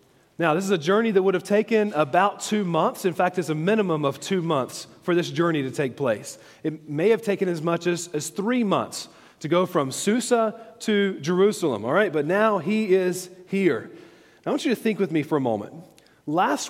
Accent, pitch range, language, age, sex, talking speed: American, 160-210 Hz, English, 40-59, male, 215 wpm